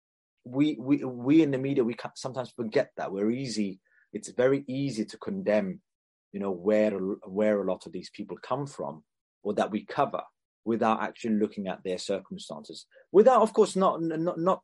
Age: 20-39